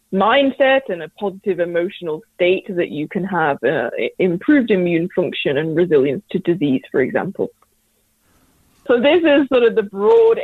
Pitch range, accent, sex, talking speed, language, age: 170-230 Hz, British, female, 155 wpm, English, 20-39